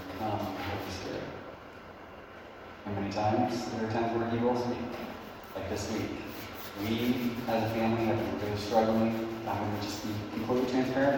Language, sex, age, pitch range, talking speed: English, male, 30-49, 95-110 Hz, 165 wpm